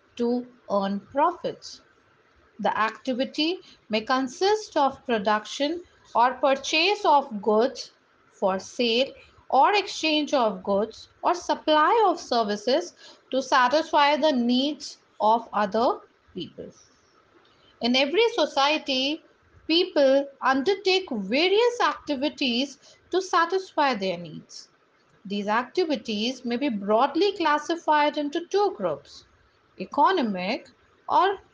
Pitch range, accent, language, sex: 245-330 Hz, Indian, English, female